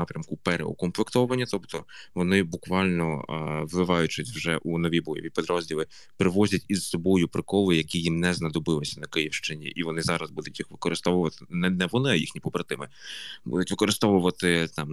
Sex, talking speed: male, 145 wpm